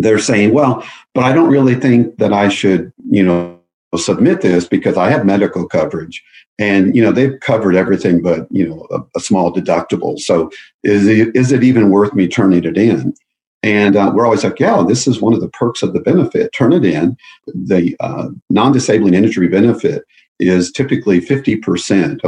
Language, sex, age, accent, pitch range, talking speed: English, male, 50-69, American, 90-110 Hz, 190 wpm